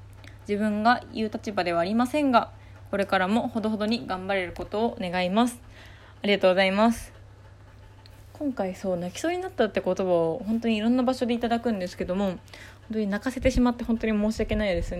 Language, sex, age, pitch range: Japanese, female, 20-39, 180-245 Hz